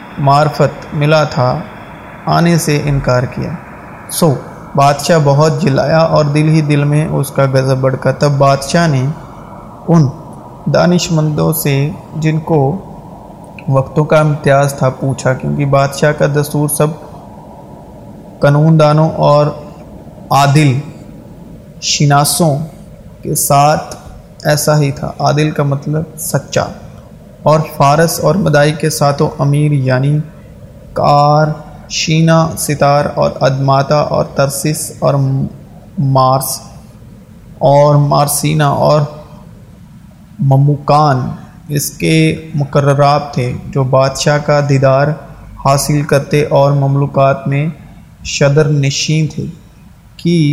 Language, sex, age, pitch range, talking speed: Urdu, male, 30-49, 140-155 Hz, 105 wpm